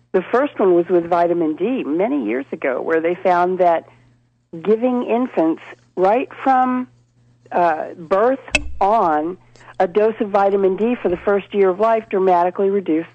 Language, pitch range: English, 160-205 Hz